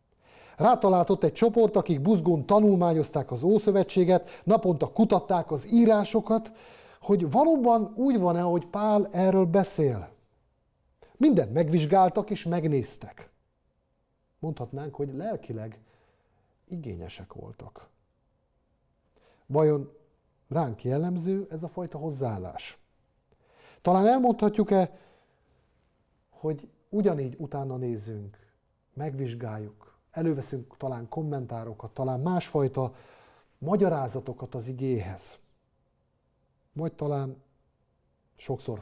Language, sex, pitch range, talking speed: Hungarian, male, 125-190 Hz, 85 wpm